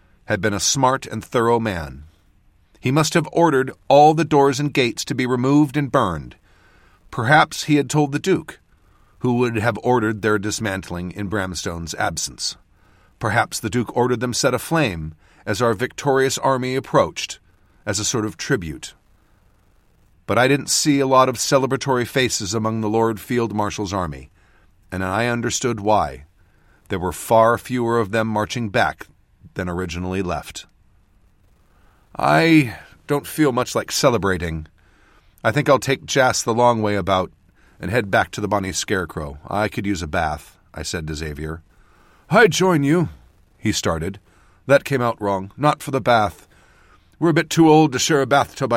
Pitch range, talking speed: 90-135 Hz, 165 wpm